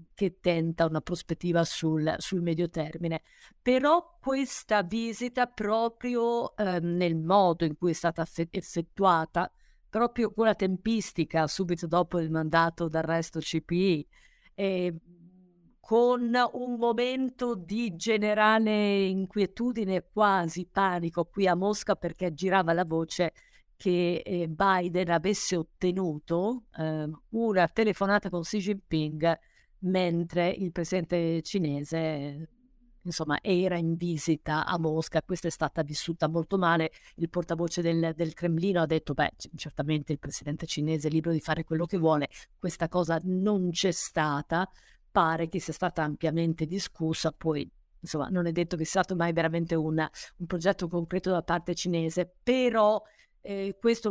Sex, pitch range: female, 165-200 Hz